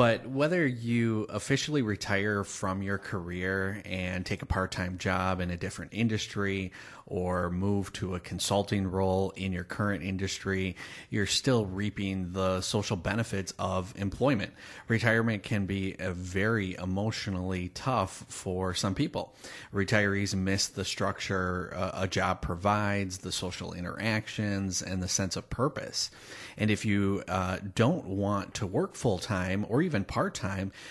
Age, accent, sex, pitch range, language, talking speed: 30-49, American, male, 95-110 Hz, English, 140 wpm